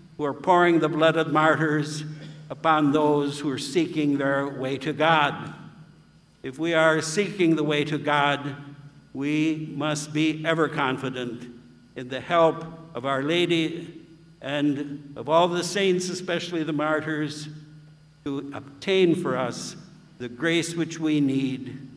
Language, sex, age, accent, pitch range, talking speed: English, male, 60-79, American, 145-170 Hz, 140 wpm